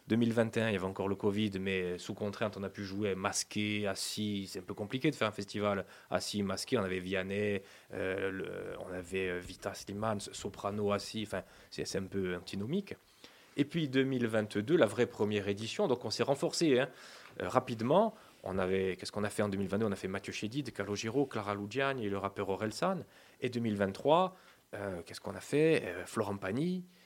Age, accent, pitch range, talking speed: 30-49, French, 100-130 Hz, 195 wpm